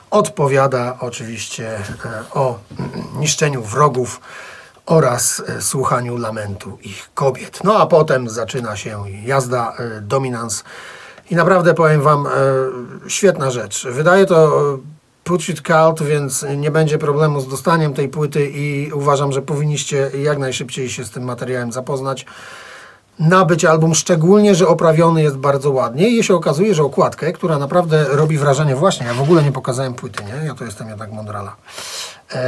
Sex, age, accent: male, 40-59, native